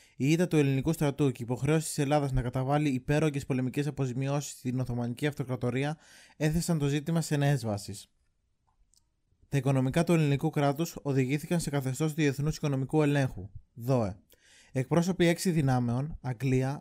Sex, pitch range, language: male, 130-155 Hz, Greek